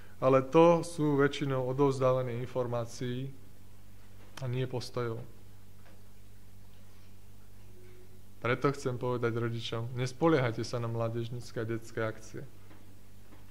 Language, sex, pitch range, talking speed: Slovak, male, 100-135 Hz, 90 wpm